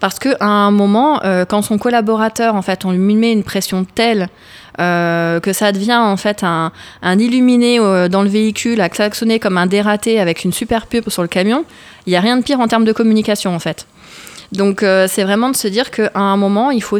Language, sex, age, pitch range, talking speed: French, female, 20-39, 180-220 Hz, 225 wpm